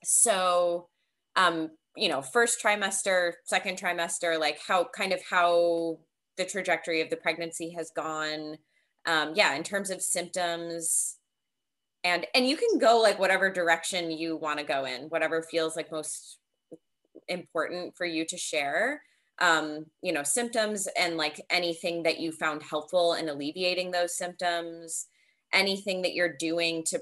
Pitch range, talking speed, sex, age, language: 160-190 Hz, 150 wpm, female, 20-39, English